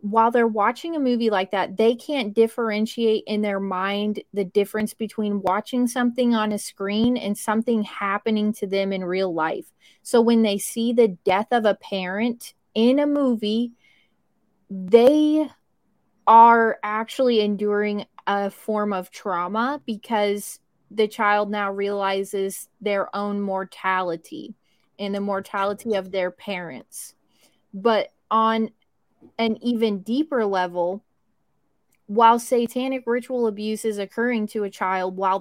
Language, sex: English, female